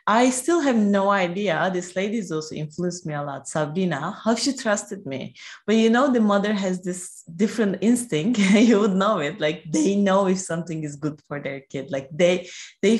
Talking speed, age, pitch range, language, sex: 200 wpm, 20-39, 170-235 Hz, English, female